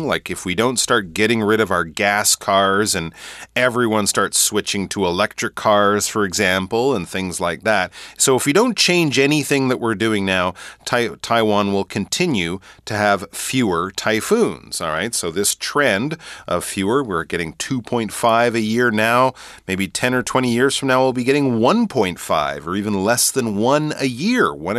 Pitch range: 105-140 Hz